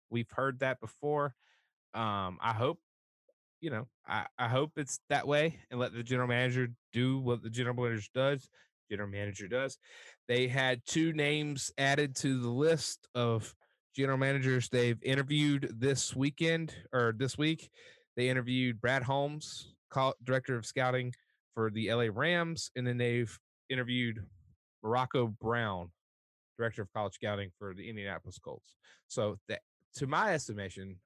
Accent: American